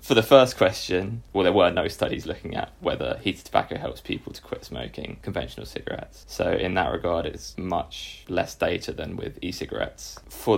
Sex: male